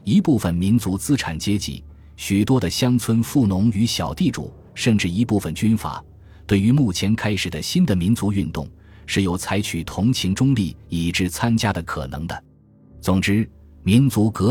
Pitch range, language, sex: 85-115 Hz, Chinese, male